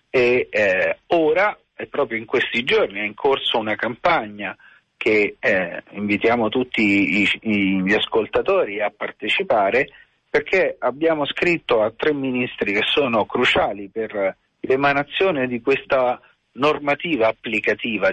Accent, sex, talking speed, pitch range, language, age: native, male, 125 wpm, 110-165 Hz, Italian, 40-59